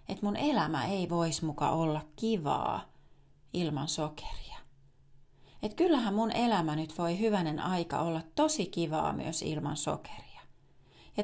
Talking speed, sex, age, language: 135 wpm, female, 30-49, English